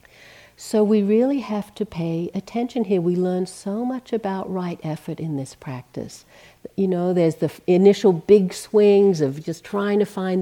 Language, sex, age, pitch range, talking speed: English, female, 60-79, 175-215 Hz, 175 wpm